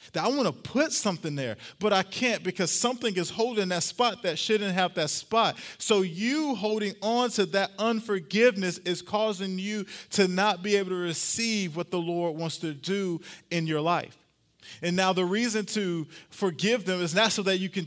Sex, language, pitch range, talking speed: male, English, 155-195 Hz, 200 wpm